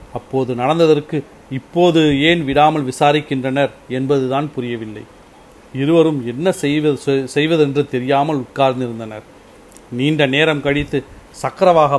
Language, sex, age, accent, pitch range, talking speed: Tamil, male, 40-59, native, 130-155 Hz, 90 wpm